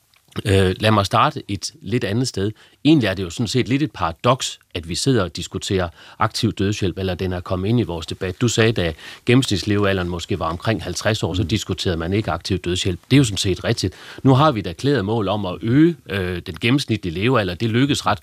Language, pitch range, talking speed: Danish, 95-130 Hz, 220 wpm